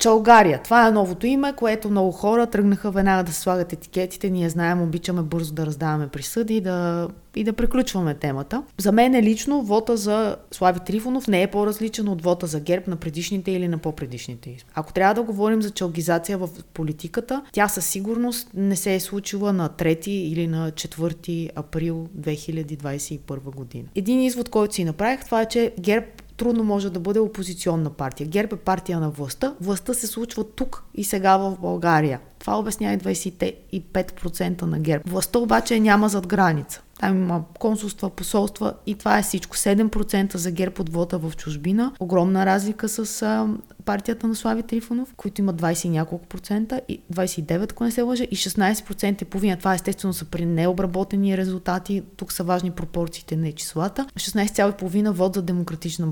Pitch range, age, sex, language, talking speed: 170-215 Hz, 30-49, female, Bulgarian, 170 wpm